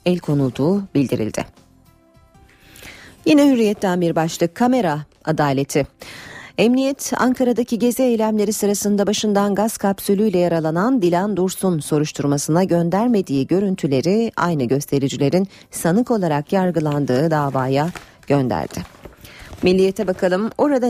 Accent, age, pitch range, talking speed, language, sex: native, 40-59, 150-205 Hz, 95 wpm, Turkish, female